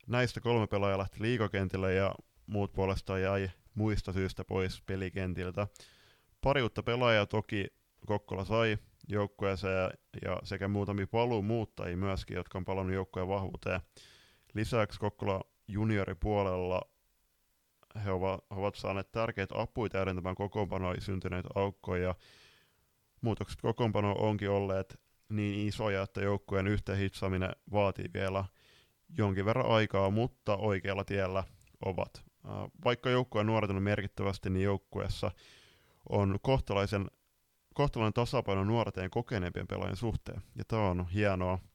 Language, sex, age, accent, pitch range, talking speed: Finnish, male, 20-39, native, 95-110 Hz, 110 wpm